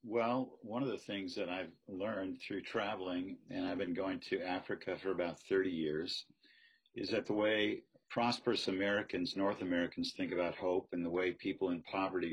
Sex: male